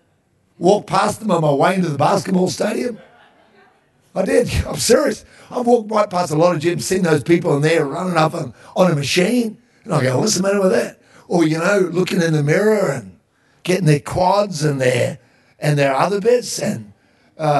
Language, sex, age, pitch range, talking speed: English, male, 50-69, 145-215 Hz, 200 wpm